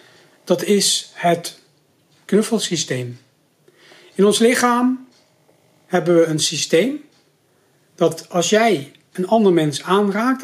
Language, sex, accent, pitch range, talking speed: Dutch, male, Dutch, 155-215 Hz, 105 wpm